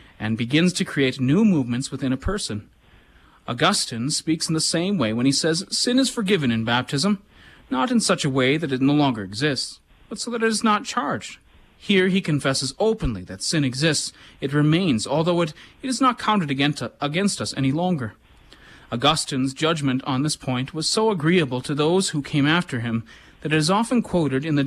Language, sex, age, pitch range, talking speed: English, male, 30-49, 130-175 Hz, 195 wpm